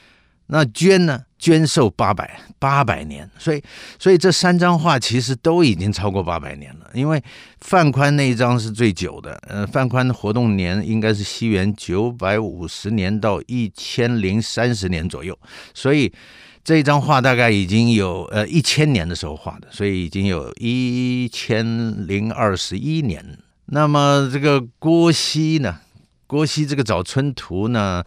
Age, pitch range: 50-69, 95-135 Hz